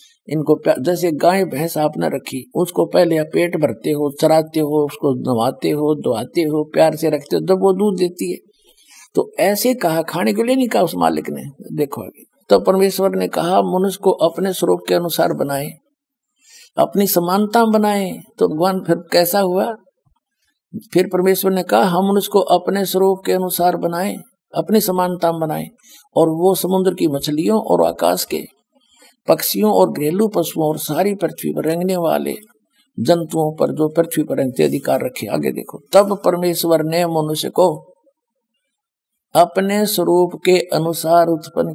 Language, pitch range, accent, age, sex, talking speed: Hindi, 155-205 Hz, native, 60-79, male, 160 wpm